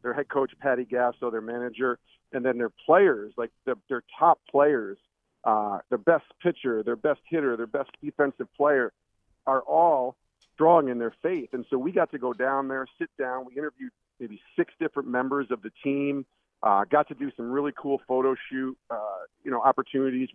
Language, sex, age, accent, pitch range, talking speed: English, male, 50-69, American, 120-145 Hz, 190 wpm